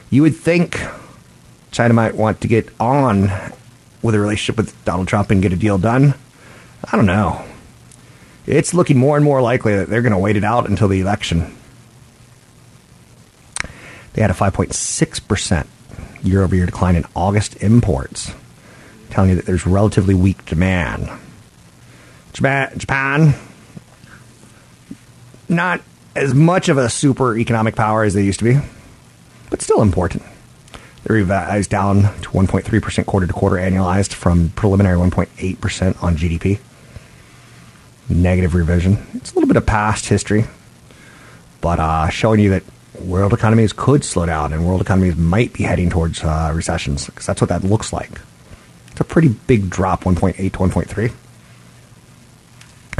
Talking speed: 145 wpm